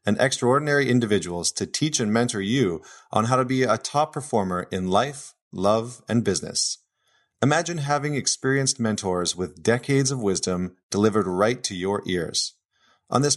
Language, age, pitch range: English, 30-49, 105-130 Hz